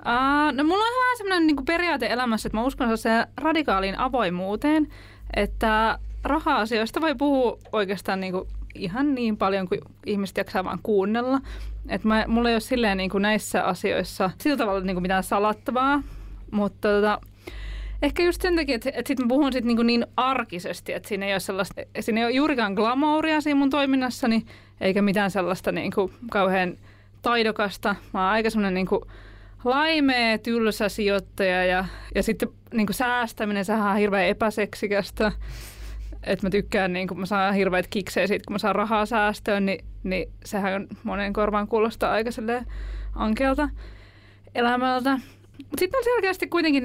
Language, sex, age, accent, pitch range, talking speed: Finnish, female, 20-39, native, 195-255 Hz, 150 wpm